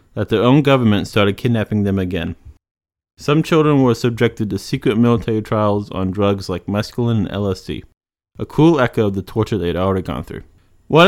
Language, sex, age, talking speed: English, male, 20-39, 185 wpm